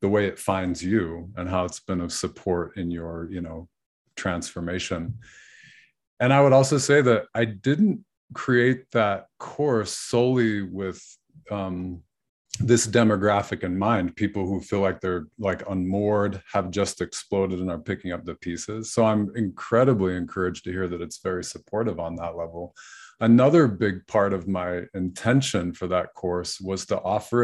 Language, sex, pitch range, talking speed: English, male, 90-115 Hz, 165 wpm